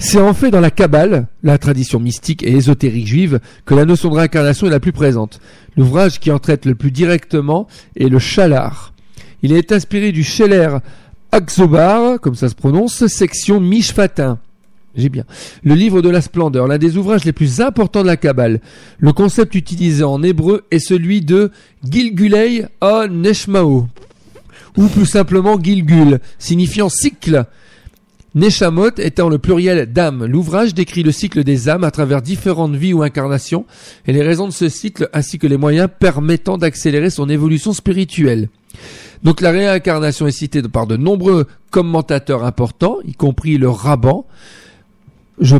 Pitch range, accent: 140-190 Hz, French